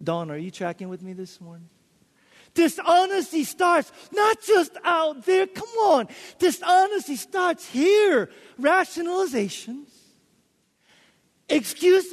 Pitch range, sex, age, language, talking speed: 205-335 Hz, male, 40-59, English, 105 wpm